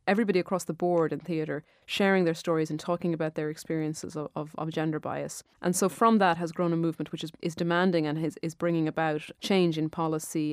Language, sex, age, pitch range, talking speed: English, female, 30-49, 155-175 Hz, 220 wpm